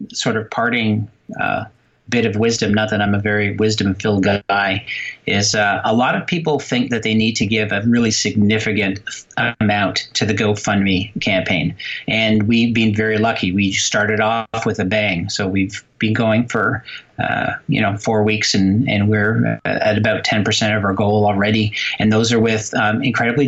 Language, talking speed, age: English, 185 wpm, 40-59